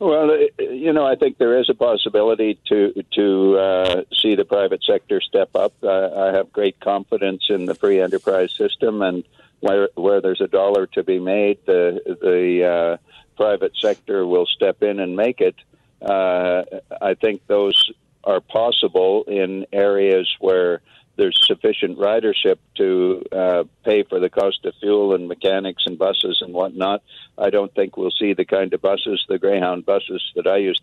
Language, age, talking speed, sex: English, 60-79, 175 wpm, male